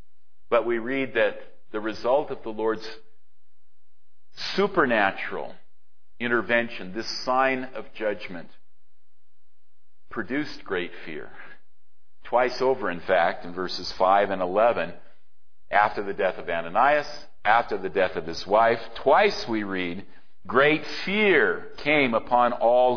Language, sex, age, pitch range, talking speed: English, male, 50-69, 115-145 Hz, 120 wpm